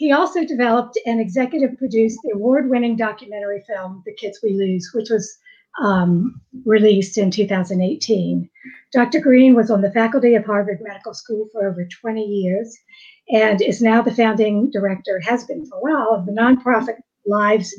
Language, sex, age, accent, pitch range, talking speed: English, female, 50-69, American, 205-265 Hz, 165 wpm